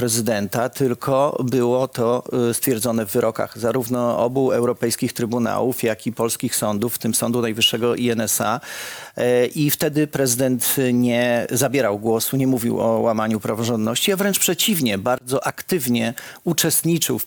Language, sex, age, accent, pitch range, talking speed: Polish, male, 40-59, native, 120-155 Hz, 130 wpm